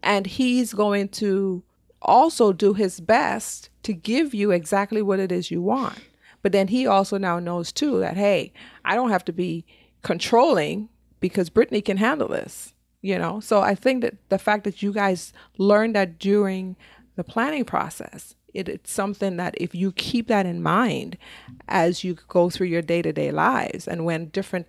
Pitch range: 170-205 Hz